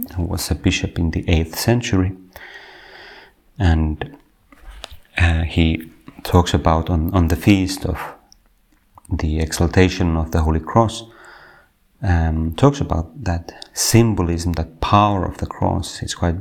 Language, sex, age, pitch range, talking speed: Finnish, male, 30-49, 85-110 Hz, 130 wpm